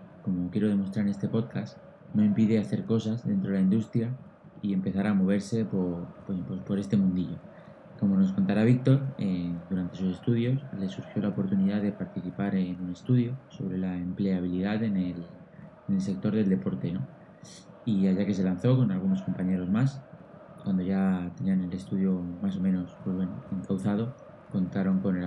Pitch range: 95-115 Hz